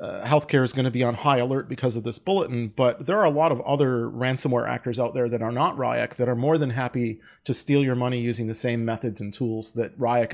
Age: 30-49